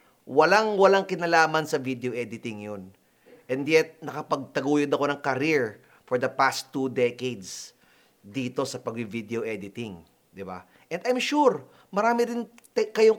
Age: 30-49